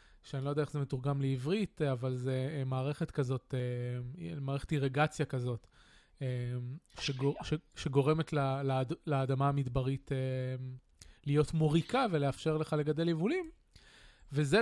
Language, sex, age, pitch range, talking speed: Hebrew, male, 20-39, 135-155 Hz, 105 wpm